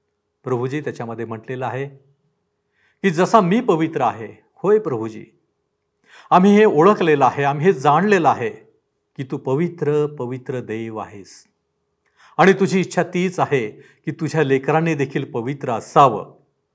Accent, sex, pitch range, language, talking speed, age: native, male, 125-170 Hz, Marathi, 105 wpm, 50-69